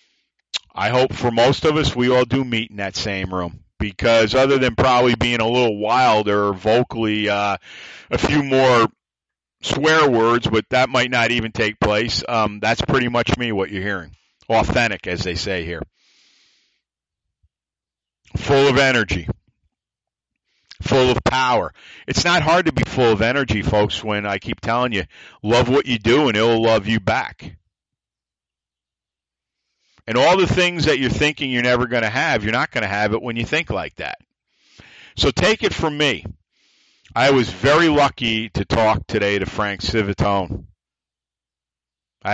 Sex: male